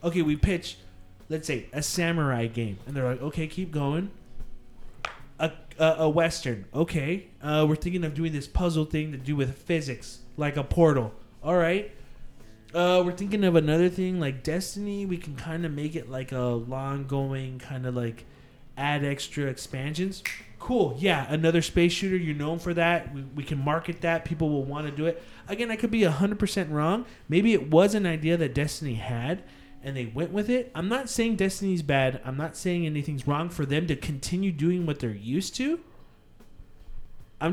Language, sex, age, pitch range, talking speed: English, male, 20-39, 135-180 Hz, 190 wpm